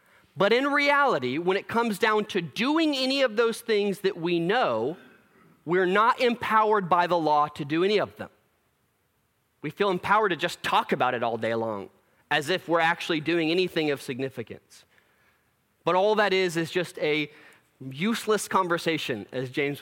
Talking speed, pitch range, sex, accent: 175 wpm, 140-205 Hz, male, American